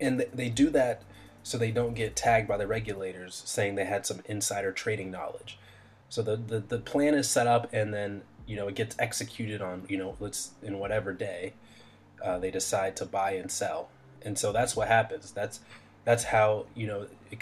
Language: English